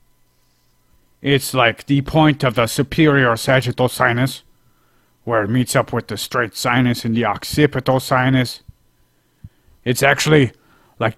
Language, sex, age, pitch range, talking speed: English, male, 40-59, 105-125 Hz, 130 wpm